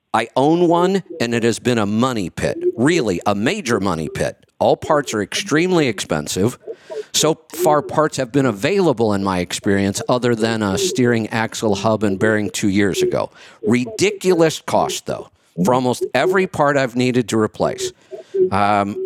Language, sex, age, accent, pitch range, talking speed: English, male, 50-69, American, 105-155 Hz, 165 wpm